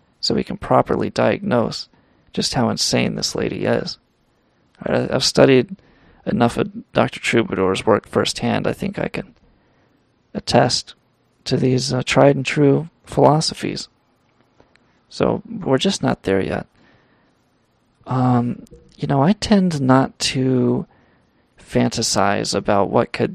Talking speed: 120 wpm